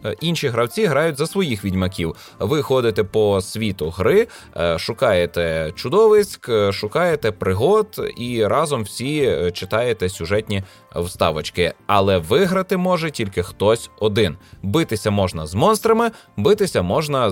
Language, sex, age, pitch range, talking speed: Ukrainian, male, 20-39, 95-140 Hz, 115 wpm